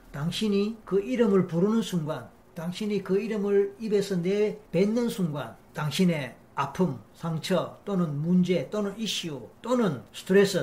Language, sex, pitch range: Korean, male, 160-215 Hz